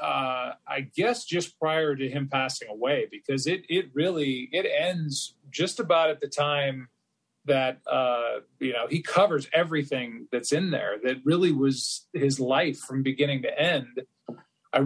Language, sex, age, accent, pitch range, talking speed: English, male, 40-59, American, 140-170 Hz, 160 wpm